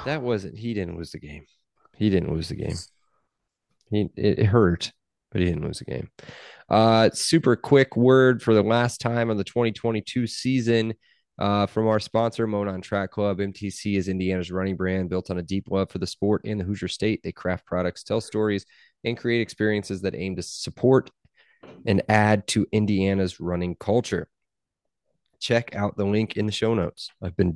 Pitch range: 95-110 Hz